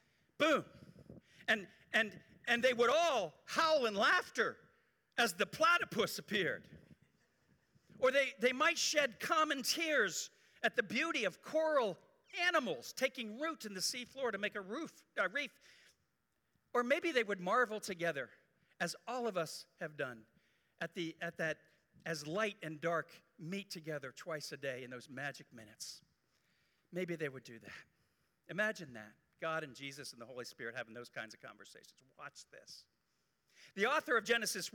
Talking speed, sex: 160 wpm, male